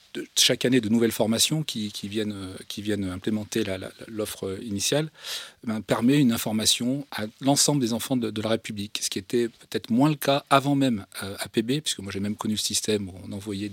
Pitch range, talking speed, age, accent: 105-125 Hz, 210 wpm, 40-59, French